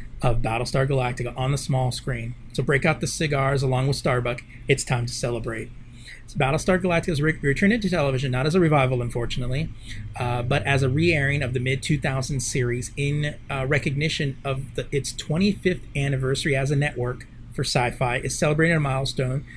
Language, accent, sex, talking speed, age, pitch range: English, American, male, 175 wpm, 30-49, 125-155 Hz